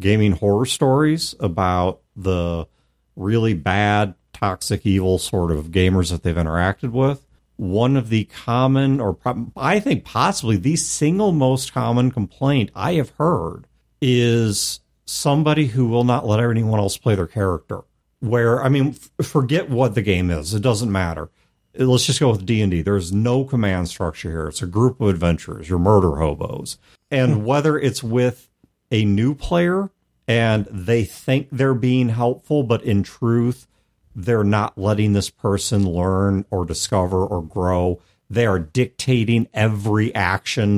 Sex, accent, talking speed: male, American, 155 wpm